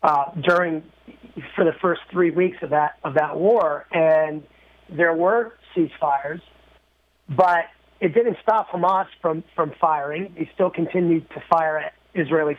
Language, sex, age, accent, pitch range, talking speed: English, male, 30-49, American, 155-180 Hz, 150 wpm